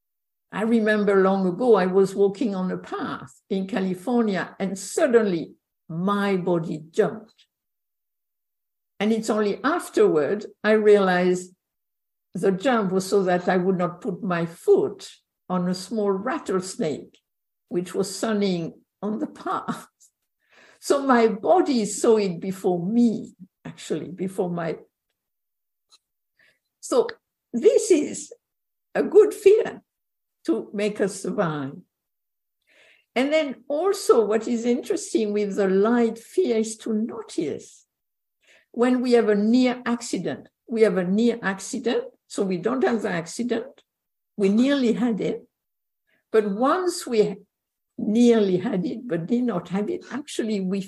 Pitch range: 195-245 Hz